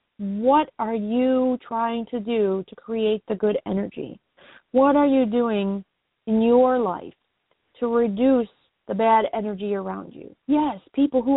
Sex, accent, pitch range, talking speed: female, American, 220-265 Hz, 150 wpm